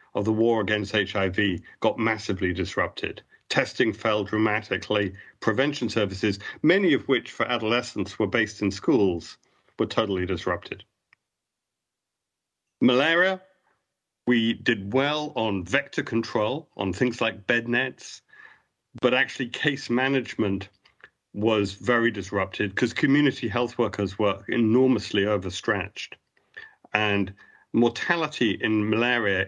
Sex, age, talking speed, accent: male, 50-69, 110 wpm, British